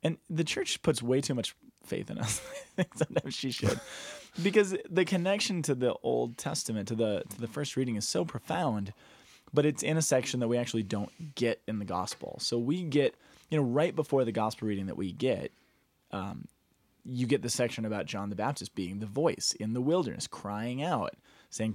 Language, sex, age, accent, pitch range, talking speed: English, male, 20-39, American, 105-150 Hz, 200 wpm